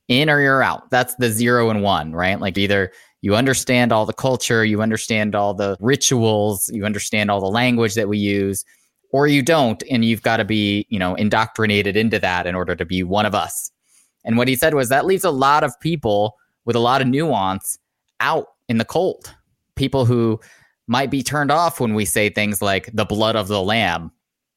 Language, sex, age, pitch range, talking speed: English, male, 20-39, 100-130 Hz, 210 wpm